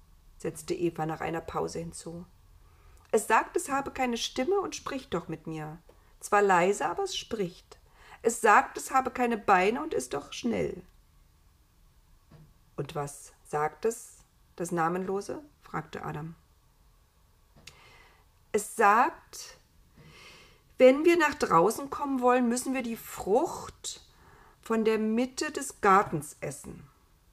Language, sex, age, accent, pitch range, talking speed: German, female, 50-69, German, 165-245 Hz, 125 wpm